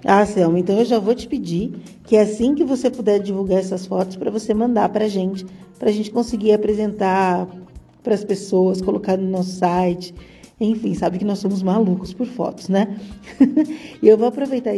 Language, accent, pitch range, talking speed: Portuguese, Brazilian, 190-220 Hz, 195 wpm